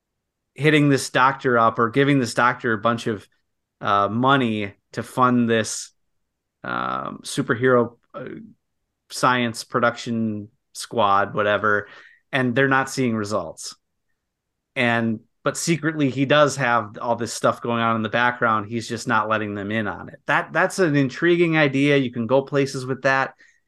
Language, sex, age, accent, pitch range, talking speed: English, male, 30-49, American, 110-145 Hz, 155 wpm